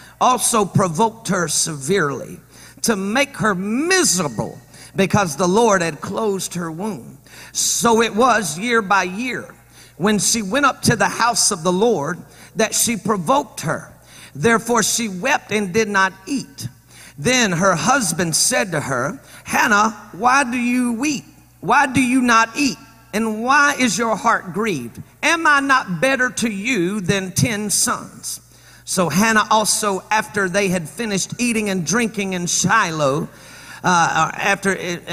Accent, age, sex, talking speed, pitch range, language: American, 50-69, male, 145 wpm, 180-235 Hz, English